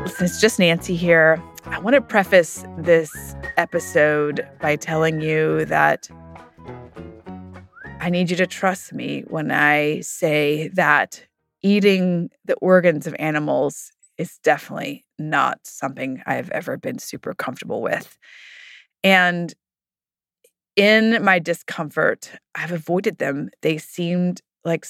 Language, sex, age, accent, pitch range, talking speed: English, female, 20-39, American, 160-185 Hz, 120 wpm